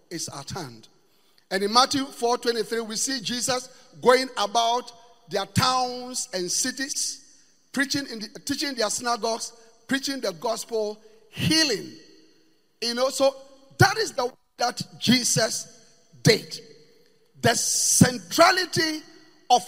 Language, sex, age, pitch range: English, male, 50-69, 190-270 Hz